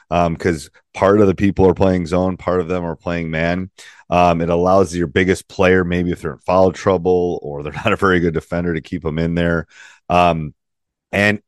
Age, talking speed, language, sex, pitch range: 30-49, 215 wpm, English, male, 85-105 Hz